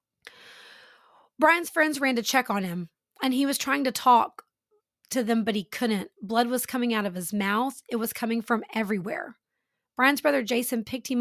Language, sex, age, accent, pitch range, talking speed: English, female, 30-49, American, 210-280 Hz, 185 wpm